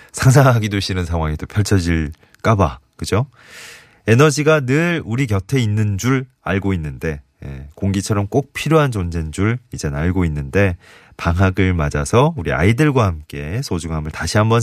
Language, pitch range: Korean, 80-130 Hz